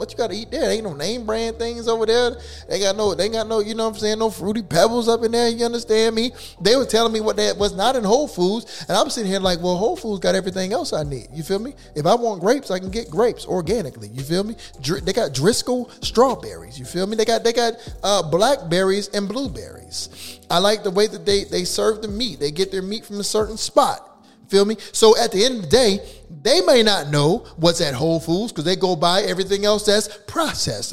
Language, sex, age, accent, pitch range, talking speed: English, male, 30-49, American, 175-225 Hz, 250 wpm